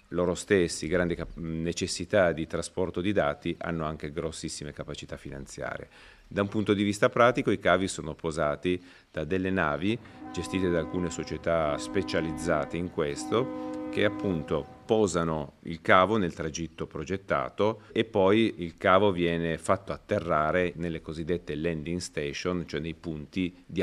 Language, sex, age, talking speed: Italian, male, 40-59, 140 wpm